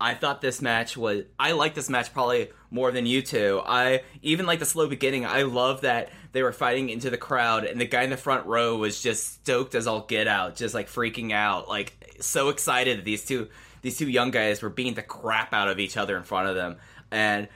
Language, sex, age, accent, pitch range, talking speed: English, male, 20-39, American, 115-135 Hz, 240 wpm